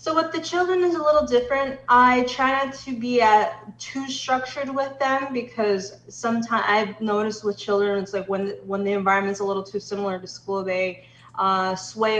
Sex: female